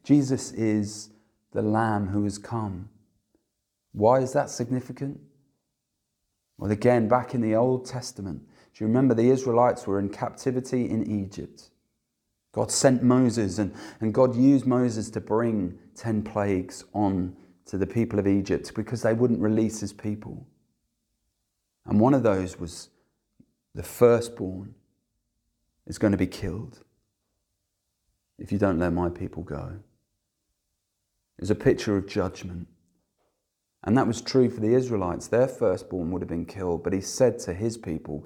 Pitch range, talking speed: 95-115 Hz, 150 wpm